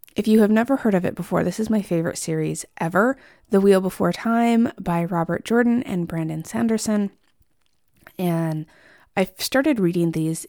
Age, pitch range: 20-39, 170-220 Hz